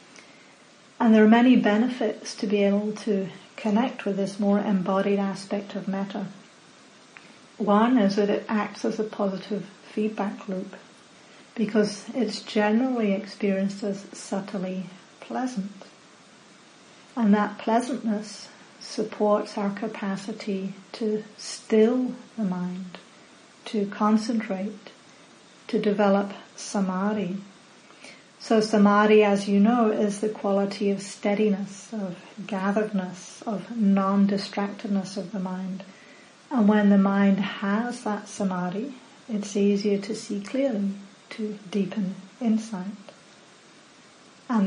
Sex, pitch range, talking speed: female, 200-220 Hz, 110 wpm